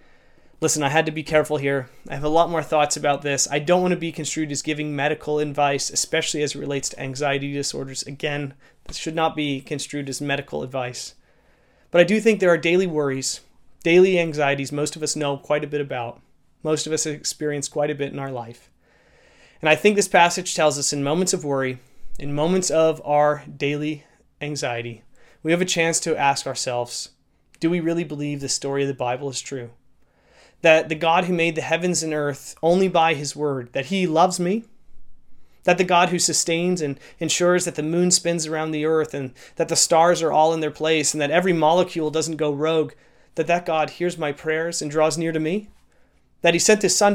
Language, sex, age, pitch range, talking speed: English, male, 30-49, 145-175 Hz, 215 wpm